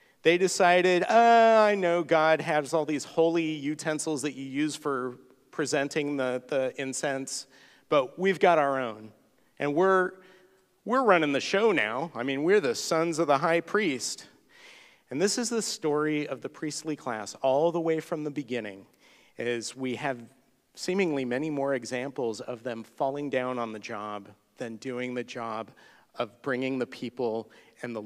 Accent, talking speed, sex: American, 170 wpm, male